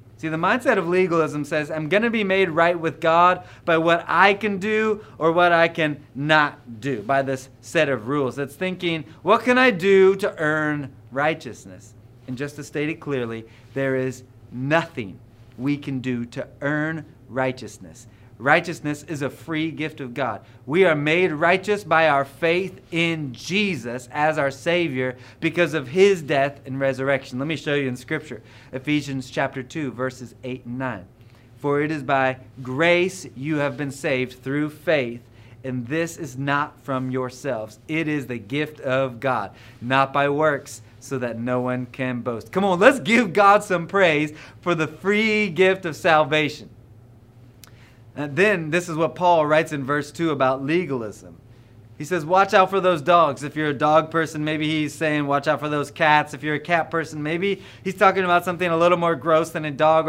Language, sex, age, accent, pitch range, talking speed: English, male, 30-49, American, 130-170 Hz, 185 wpm